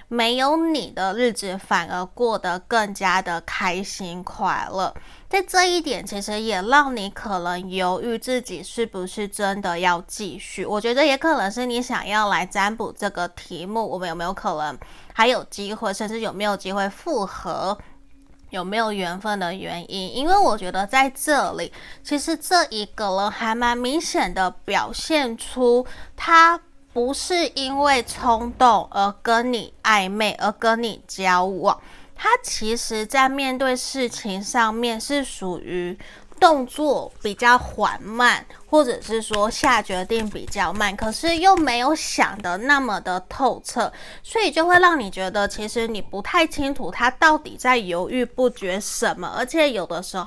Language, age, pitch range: Chinese, 20-39, 195-265 Hz